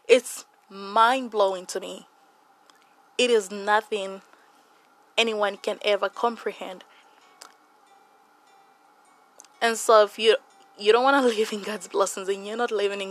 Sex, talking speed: female, 130 wpm